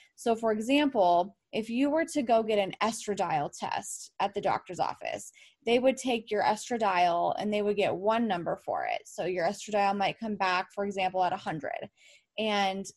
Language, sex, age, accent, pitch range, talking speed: English, female, 20-39, American, 195-235 Hz, 185 wpm